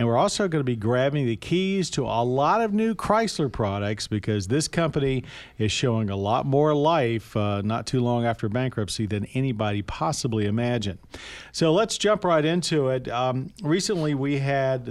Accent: American